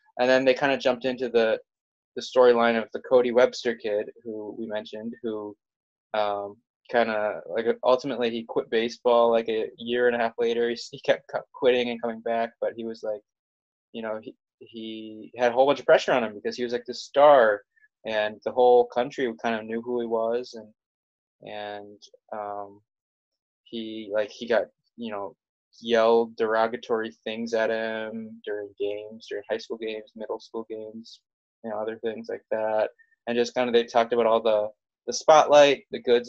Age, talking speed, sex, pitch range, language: 20-39, 190 wpm, male, 105-120 Hz, English